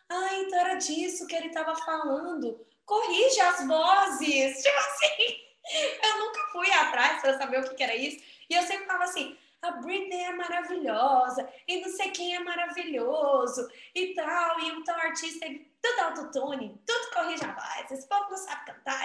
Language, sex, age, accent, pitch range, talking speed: Portuguese, female, 10-29, Brazilian, 255-345 Hz, 185 wpm